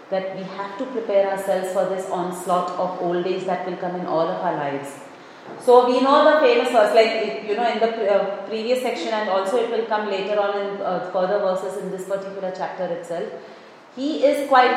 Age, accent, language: 30-49, Indian, English